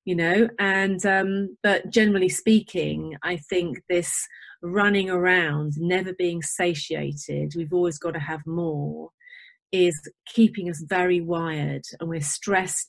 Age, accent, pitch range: 30-49, British, 165-205 Hz